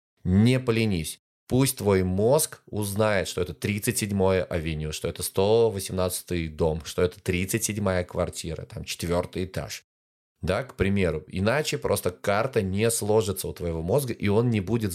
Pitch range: 90-120 Hz